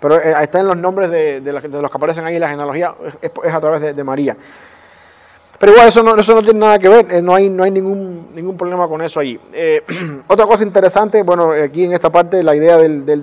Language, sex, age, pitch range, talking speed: English, male, 30-49, 145-170 Hz, 240 wpm